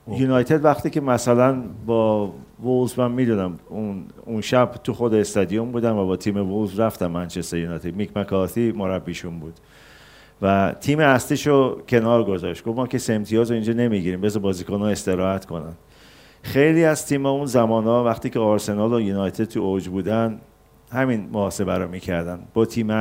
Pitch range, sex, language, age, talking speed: 100-125 Hz, male, Persian, 50-69, 155 wpm